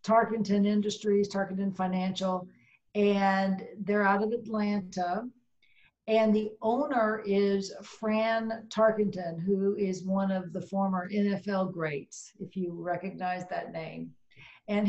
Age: 50-69